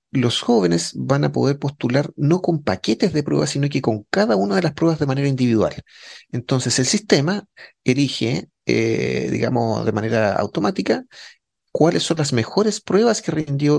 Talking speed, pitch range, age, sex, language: 165 wpm, 110-150 Hz, 30-49, male, Spanish